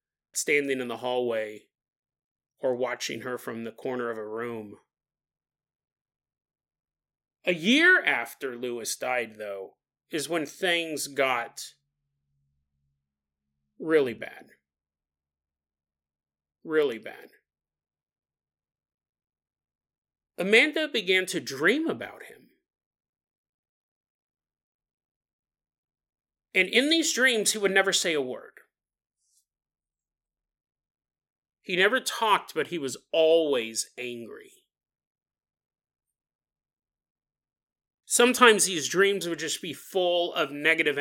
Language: English